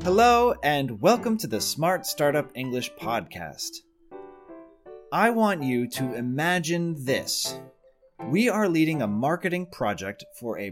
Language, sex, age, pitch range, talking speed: English, male, 30-49, 115-180 Hz, 130 wpm